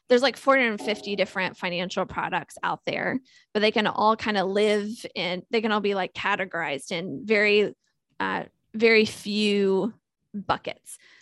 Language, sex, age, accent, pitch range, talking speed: English, female, 20-39, American, 185-235 Hz, 150 wpm